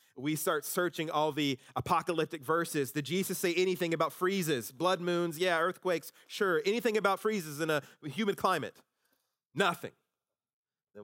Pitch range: 125-165 Hz